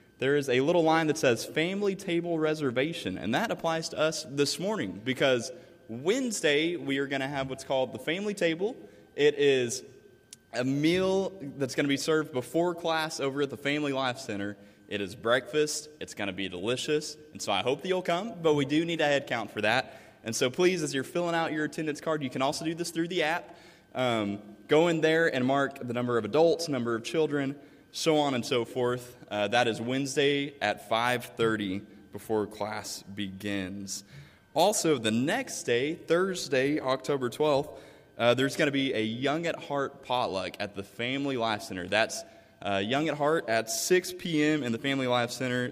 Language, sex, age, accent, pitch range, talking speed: English, male, 20-39, American, 115-155 Hz, 195 wpm